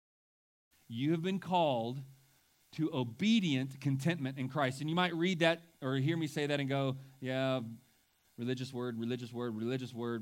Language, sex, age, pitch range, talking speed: English, male, 30-49, 115-150 Hz, 165 wpm